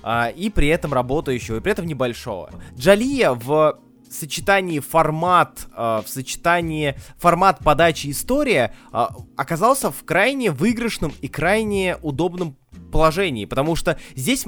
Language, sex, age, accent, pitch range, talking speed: Russian, male, 20-39, native, 125-190 Hz, 115 wpm